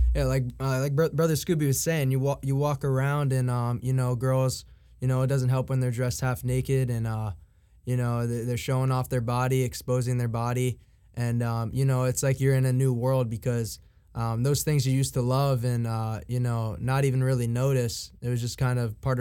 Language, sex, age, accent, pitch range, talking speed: English, male, 20-39, American, 115-130 Hz, 235 wpm